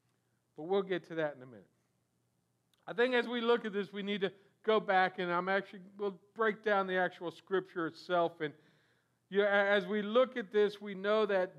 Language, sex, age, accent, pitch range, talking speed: English, male, 50-69, American, 175-225 Hz, 210 wpm